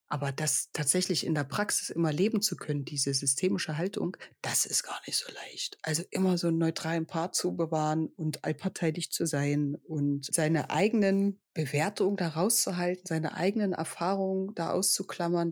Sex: female